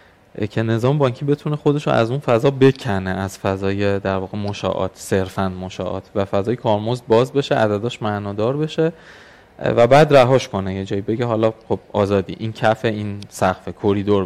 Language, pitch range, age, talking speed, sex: Persian, 100-135 Hz, 20-39, 170 wpm, male